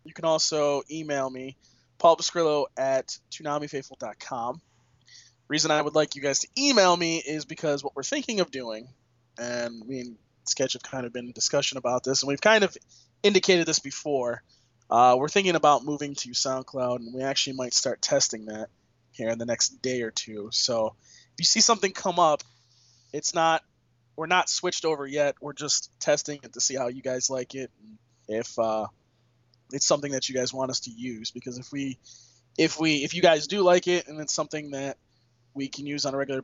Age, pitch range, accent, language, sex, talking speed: 20-39, 120-155 Hz, American, English, male, 205 wpm